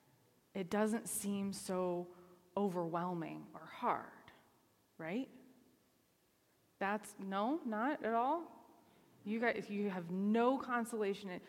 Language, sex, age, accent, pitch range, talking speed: English, female, 20-39, American, 180-225 Hz, 100 wpm